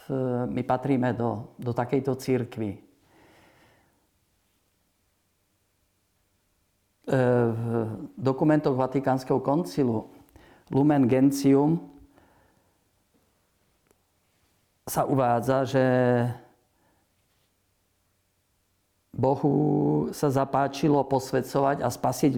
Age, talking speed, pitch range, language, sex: 50-69, 55 wpm, 120-140 Hz, Slovak, male